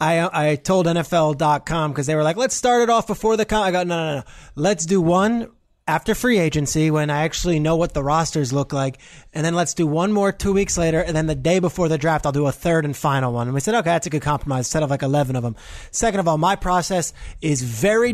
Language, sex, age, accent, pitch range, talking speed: English, male, 20-39, American, 155-190 Hz, 260 wpm